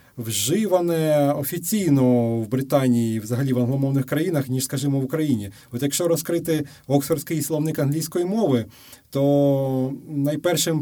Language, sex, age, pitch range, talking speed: Ukrainian, male, 30-49, 130-170 Hz, 120 wpm